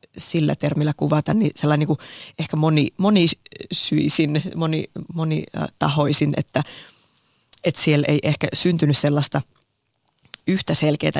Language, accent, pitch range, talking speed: Finnish, native, 150-165 Hz, 115 wpm